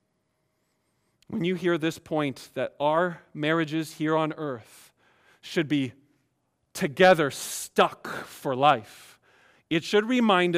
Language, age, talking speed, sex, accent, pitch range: English, 40-59, 115 wpm, male, American, 155-220 Hz